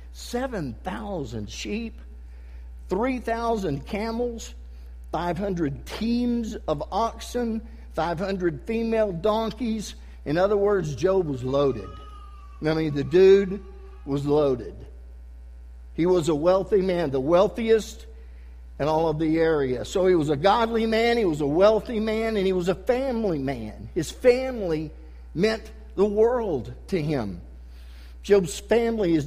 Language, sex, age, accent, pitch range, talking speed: English, male, 50-69, American, 140-220 Hz, 125 wpm